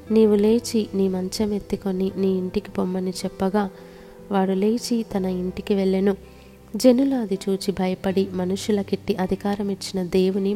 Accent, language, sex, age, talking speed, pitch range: native, Telugu, female, 20-39, 120 wpm, 190-210 Hz